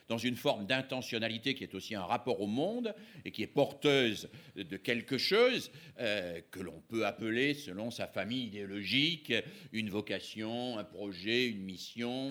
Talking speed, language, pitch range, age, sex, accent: 160 wpm, French, 110-155 Hz, 50-69, male, French